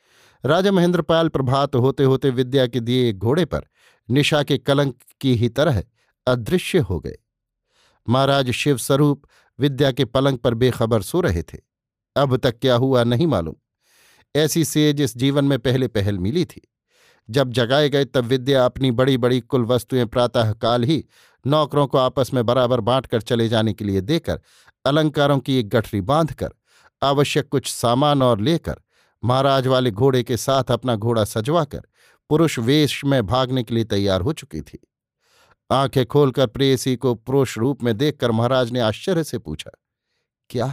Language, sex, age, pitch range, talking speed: Hindi, male, 50-69, 120-145 Hz, 160 wpm